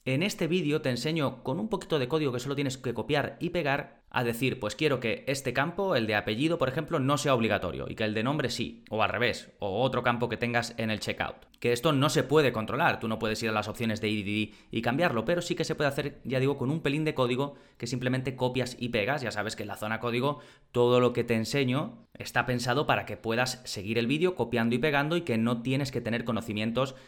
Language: Spanish